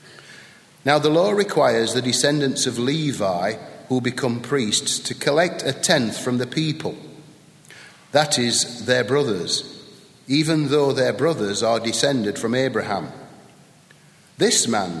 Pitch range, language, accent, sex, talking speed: 120-150 Hz, English, British, male, 130 wpm